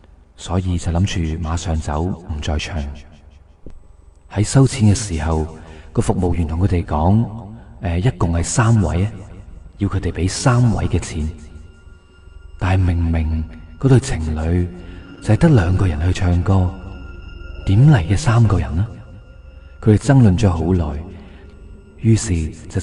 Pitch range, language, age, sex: 80-110 Hz, Chinese, 30-49, male